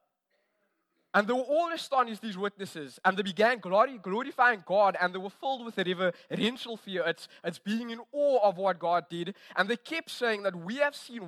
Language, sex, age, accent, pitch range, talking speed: English, male, 20-39, South African, 185-245 Hz, 200 wpm